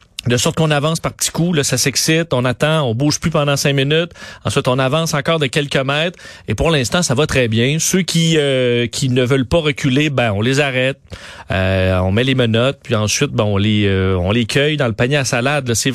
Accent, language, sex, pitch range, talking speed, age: Canadian, French, male, 125-170 Hz, 245 wpm, 40-59